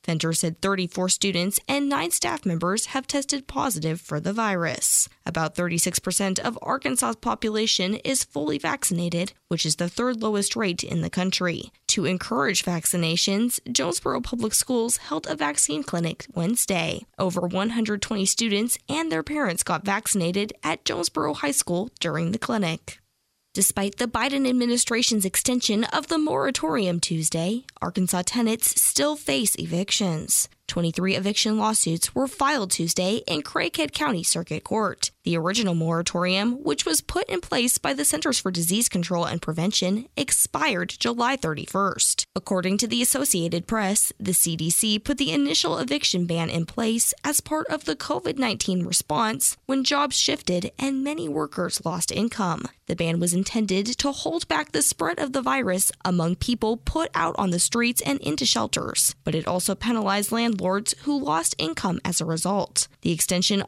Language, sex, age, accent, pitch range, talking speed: English, female, 10-29, American, 175-240 Hz, 155 wpm